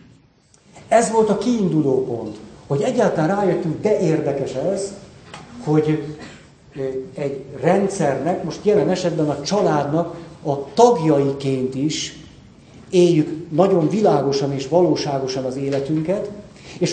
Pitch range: 145-185 Hz